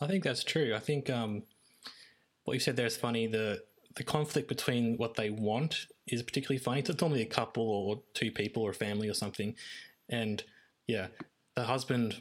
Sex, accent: male, Australian